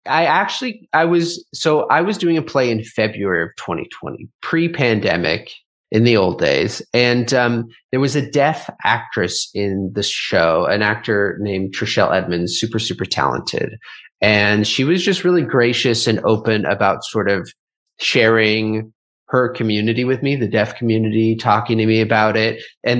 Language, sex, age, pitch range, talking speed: English, male, 30-49, 110-135 Hz, 160 wpm